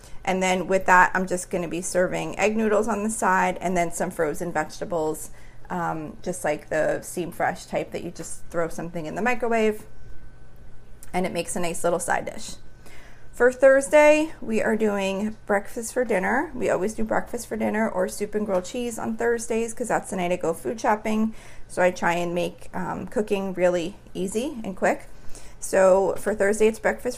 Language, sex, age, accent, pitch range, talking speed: English, female, 30-49, American, 175-215 Hz, 190 wpm